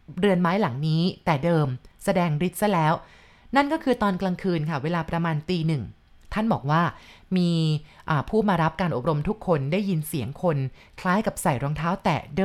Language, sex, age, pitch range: Thai, female, 20-39, 160-205 Hz